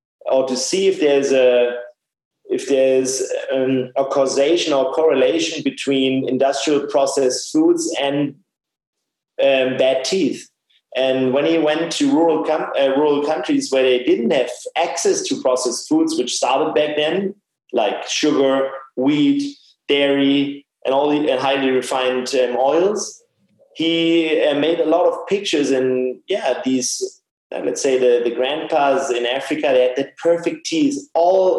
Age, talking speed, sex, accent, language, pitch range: 30-49, 150 wpm, male, German, English, 135-170 Hz